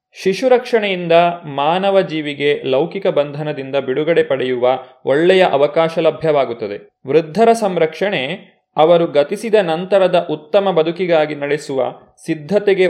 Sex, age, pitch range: male, 30-49, 145-180 Hz